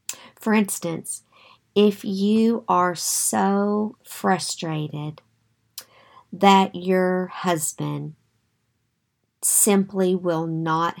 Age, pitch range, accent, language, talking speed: 50-69, 155-190 Hz, American, English, 70 wpm